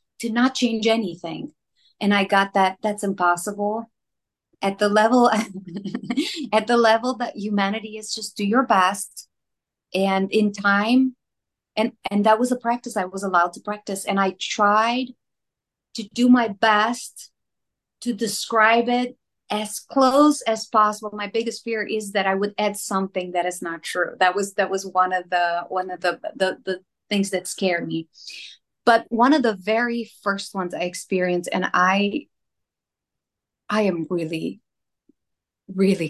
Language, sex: English, female